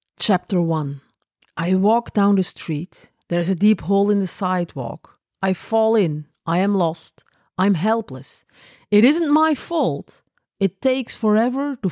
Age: 40-59